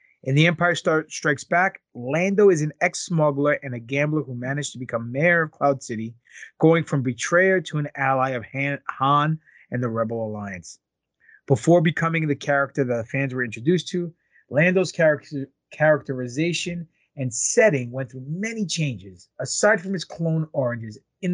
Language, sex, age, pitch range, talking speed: English, male, 30-49, 130-175 Hz, 155 wpm